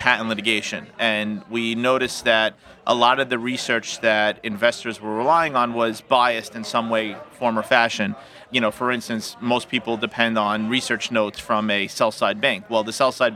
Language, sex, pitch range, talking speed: English, male, 110-130 Hz, 185 wpm